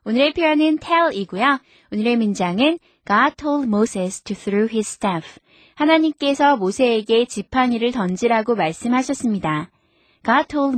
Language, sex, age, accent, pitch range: Korean, female, 20-39, native, 205-305 Hz